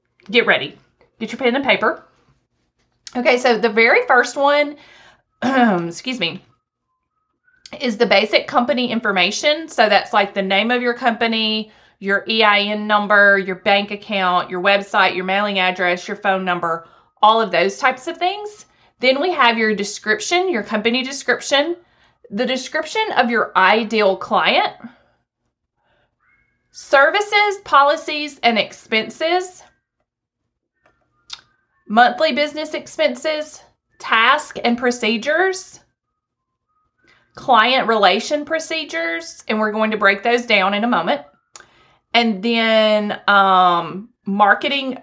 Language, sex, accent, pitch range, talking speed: English, female, American, 205-295 Hz, 120 wpm